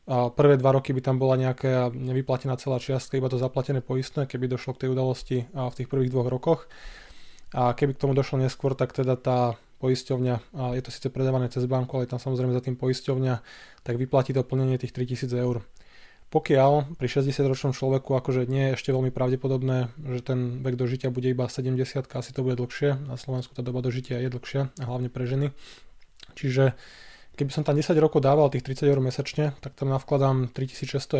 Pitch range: 130-140 Hz